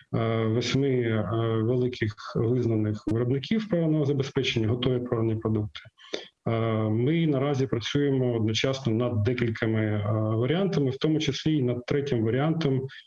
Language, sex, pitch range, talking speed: Ukrainian, male, 115-135 Hz, 100 wpm